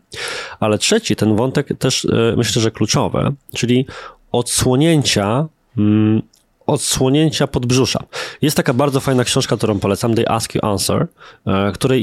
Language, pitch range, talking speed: Polish, 115-145 Hz, 120 wpm